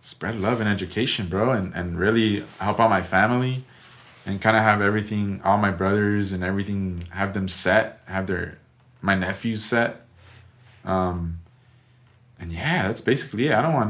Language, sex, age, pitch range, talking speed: English, male, 20-39, 95-115 Hz, 170 wpm